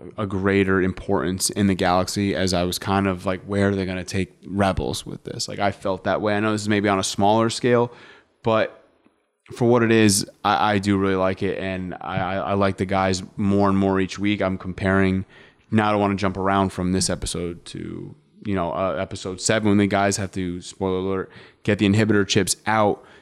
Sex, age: male, 20-39